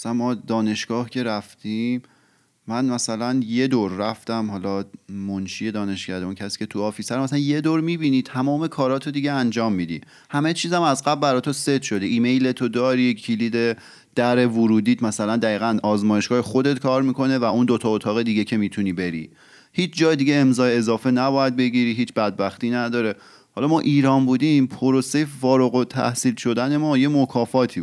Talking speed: 165 wpm